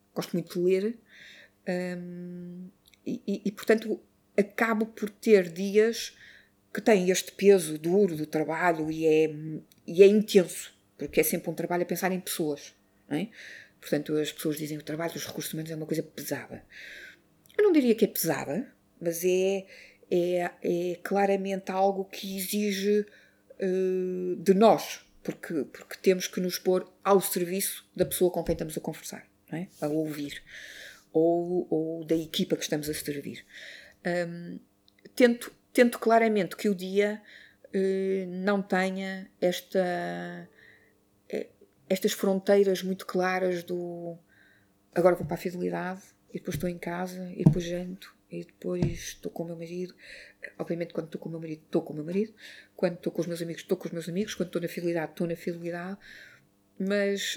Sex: female